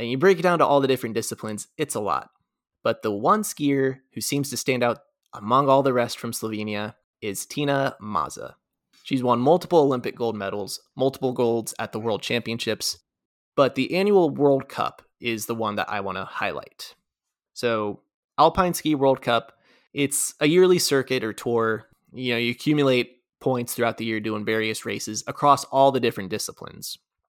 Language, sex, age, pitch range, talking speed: English, male, 20-39, 110-140 Hz, 180 wpm